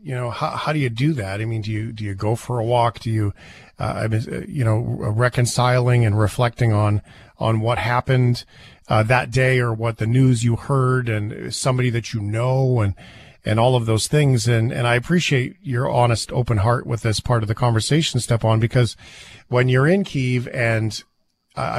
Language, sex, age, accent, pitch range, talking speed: English, male, 40-59, American, 110-135 Hz, 200 wpm